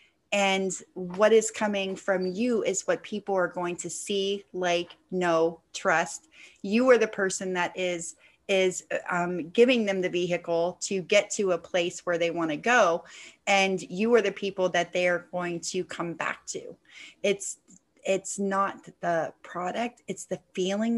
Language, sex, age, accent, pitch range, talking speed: English, female, 30-49, American, 180-220 Hz, 170 wpm